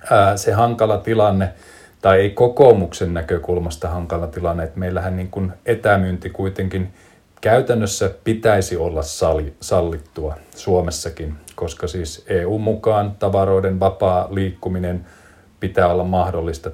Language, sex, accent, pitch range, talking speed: Finnish, male, native, 85-95 Hz, 110 wpm